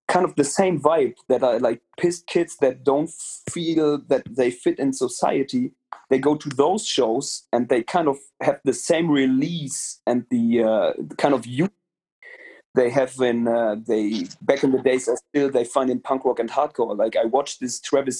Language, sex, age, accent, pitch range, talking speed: English, male, 30-49, German, 130-185 Hz, 200 wpm